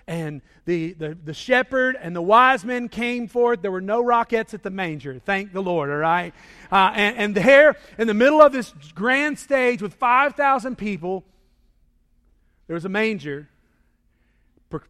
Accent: American